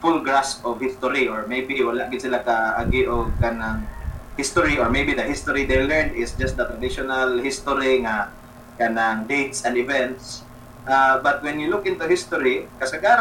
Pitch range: 120-140 Hz